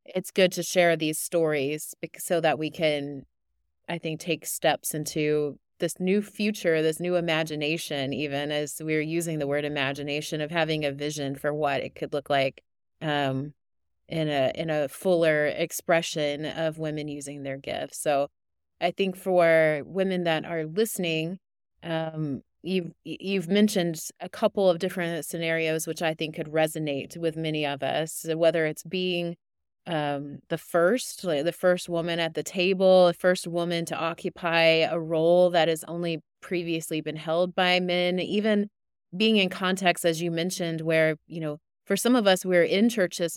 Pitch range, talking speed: 150-175 Hz, 165 wpm